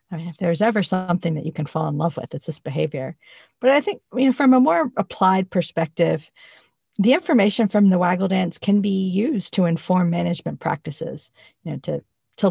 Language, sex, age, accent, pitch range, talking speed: English, female, 40-59, American, 160-195 Hz, 205 wpm